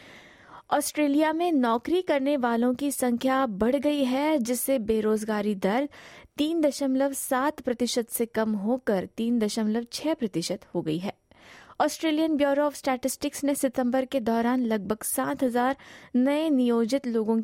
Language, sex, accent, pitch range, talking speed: Hindi, female, native, 225-285 Hz, 125 wpm